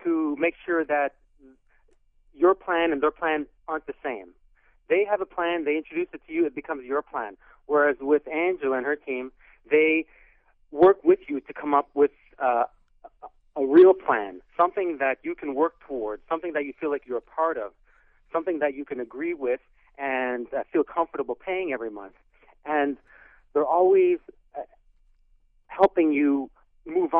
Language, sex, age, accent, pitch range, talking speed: English, male, 40-59, American, 130-170 Hz, 170 wpm